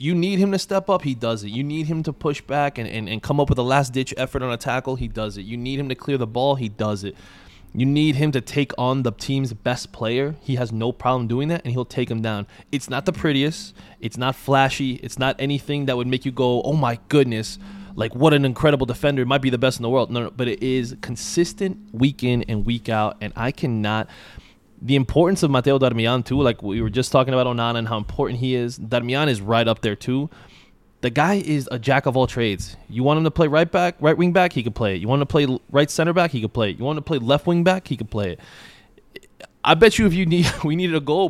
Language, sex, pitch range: English, male, 120-150 Hz